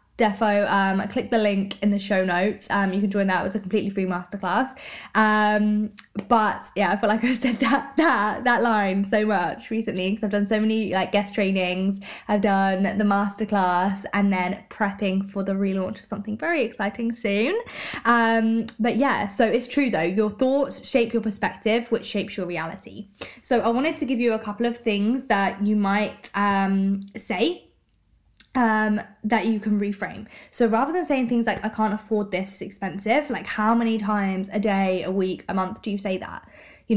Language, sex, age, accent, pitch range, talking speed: English, female, 20-39, British, 195-230 Hz, 195 wpm